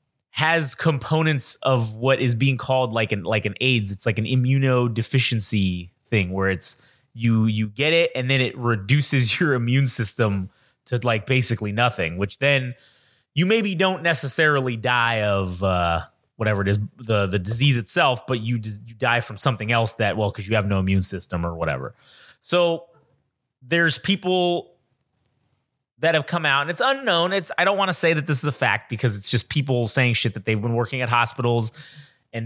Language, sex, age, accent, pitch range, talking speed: English, male, 30-49, American, 115-140 Hz, 185 wpm